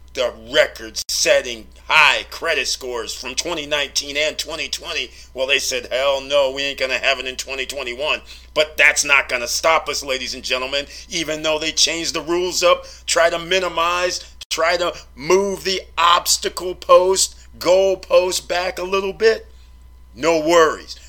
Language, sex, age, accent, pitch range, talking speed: English, male, 40-59, American, 130-170 Hz, 160 wpm